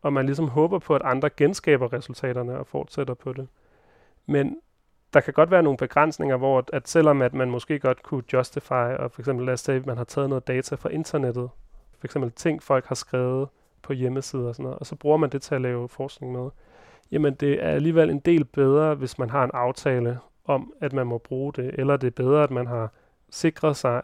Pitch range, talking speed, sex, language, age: 130-150 Hz, 215 wpm, male, Danish, 30-49